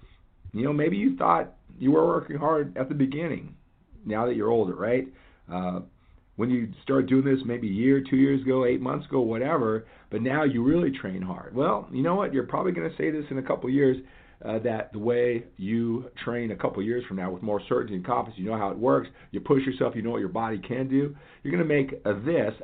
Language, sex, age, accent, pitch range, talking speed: English, male, 50-69, American, 100-135 Hz, 240 wpm